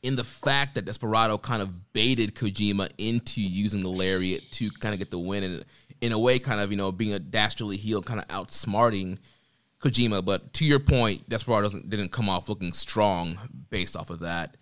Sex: male